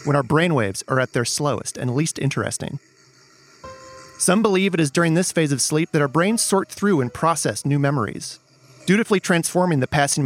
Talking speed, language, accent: 185 wpm, English, American